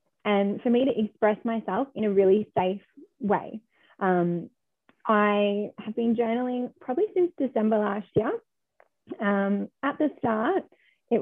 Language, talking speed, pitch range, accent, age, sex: English, 140 wpm, 195-235 Hz, Australian, 20-39, female